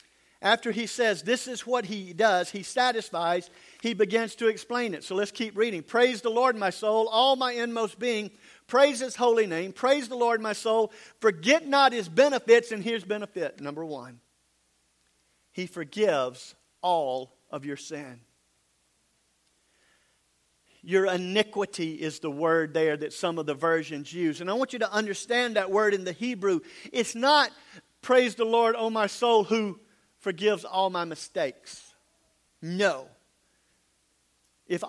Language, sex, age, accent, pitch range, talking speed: English, male, 50-69, American, 180-245 Hz, 155 wpm